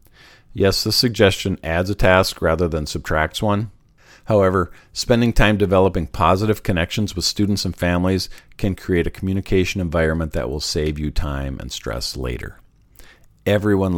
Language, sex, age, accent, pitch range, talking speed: English, male, 50-69, American, 80-110 Hz, 145 wpm